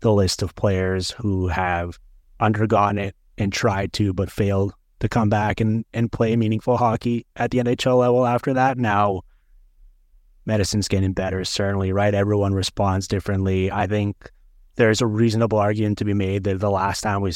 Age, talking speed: 20-39, 175 wpm